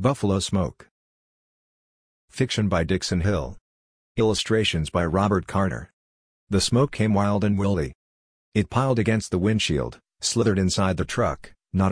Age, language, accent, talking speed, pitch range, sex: 50-69, English, American, 130 wpm, 90-105 Hz, male